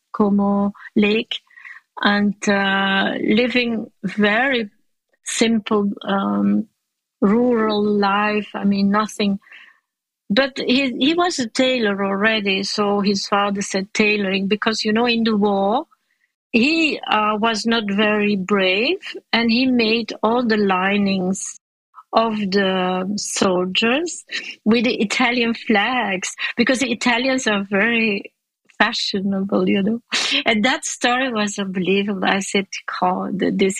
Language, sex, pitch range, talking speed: English, female, 195-245 Hz, 120 wpm